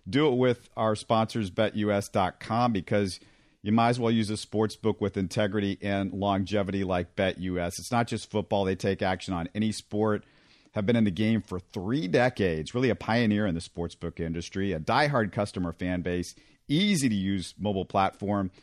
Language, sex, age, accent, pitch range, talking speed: English, male, 40-59, American, 95-115 Hz, 185 wpm